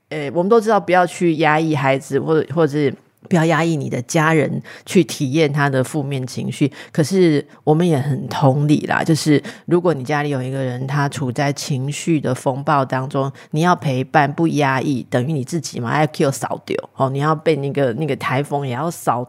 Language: Chinese